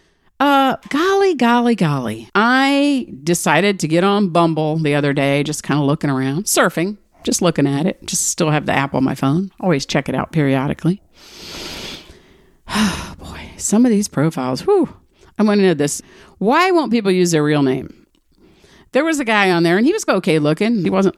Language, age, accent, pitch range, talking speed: English, 50-69, American, 150-210 Hz, 190 wpm